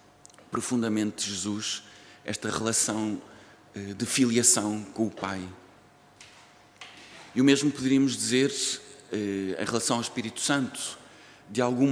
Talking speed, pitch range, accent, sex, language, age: 105 wpm, 115-135 Hz, Portuguese, male, Portuguese, 50-69